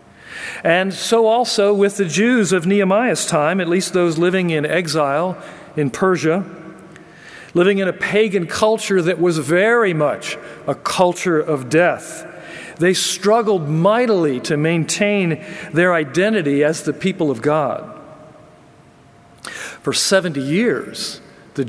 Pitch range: 160-205 Hz